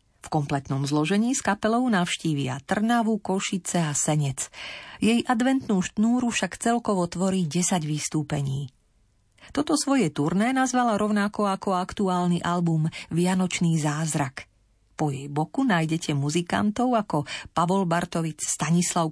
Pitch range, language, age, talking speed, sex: 150-205 Hz, Slovak, 40-59, 115 wpm, female